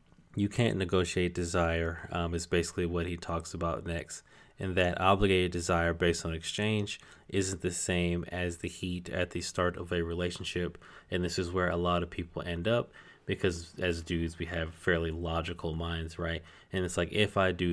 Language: English